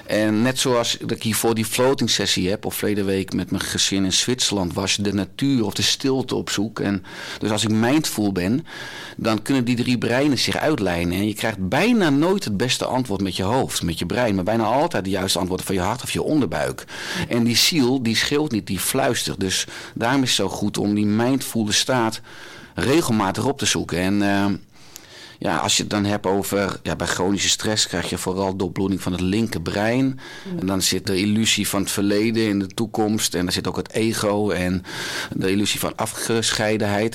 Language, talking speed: Dutch, 215 wpm